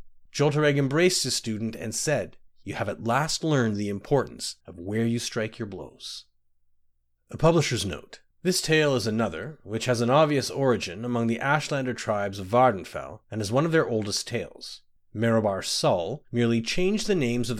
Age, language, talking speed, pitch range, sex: 30-49, English, 175 wpm, 105-145 Hz, male